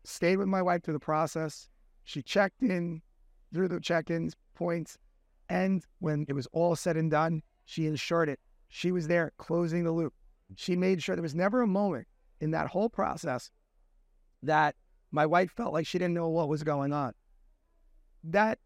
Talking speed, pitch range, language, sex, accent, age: 185 wpm, 155-200 Hz, English, male, American, 30-49